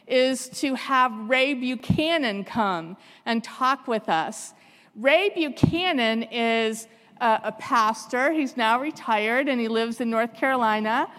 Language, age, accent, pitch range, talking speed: English, 50-69, American, 230-280 Hz, 135 wpm